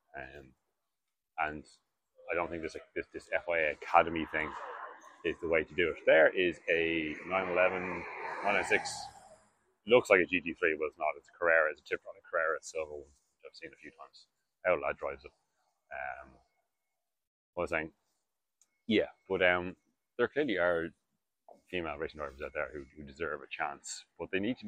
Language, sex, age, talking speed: English, male, 30-49, 185 wpm